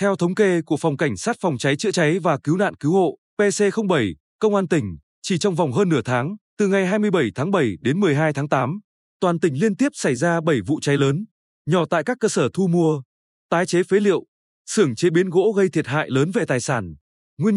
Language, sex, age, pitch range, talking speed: Vietnamese, male, 20-39, 150-200 Hz, 230 wpm